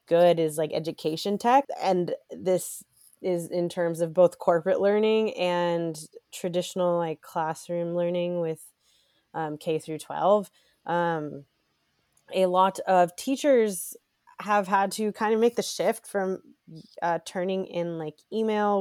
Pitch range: 175-210 Hz